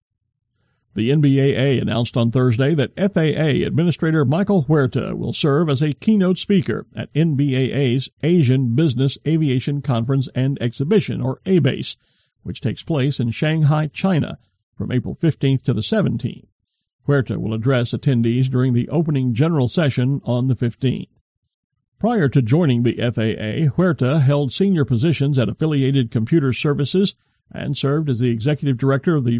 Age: 50-69